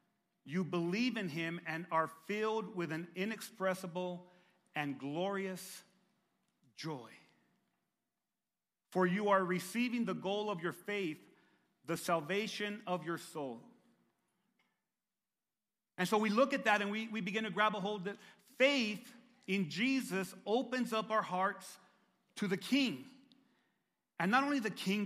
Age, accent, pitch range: 40-59, American, 180-225 Hz